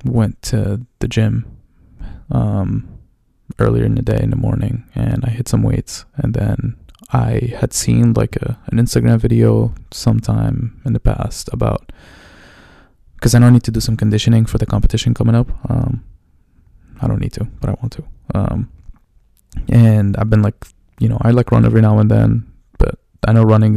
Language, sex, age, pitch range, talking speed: English, male, 20-39, 105-120 Hz, 185 wpm